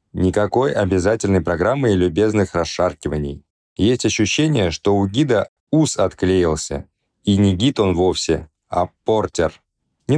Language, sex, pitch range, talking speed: Russian, male, 90-110 Hz, 125 wpm